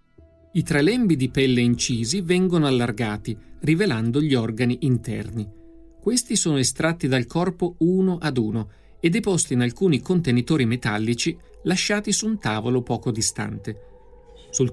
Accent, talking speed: native, 135 wpm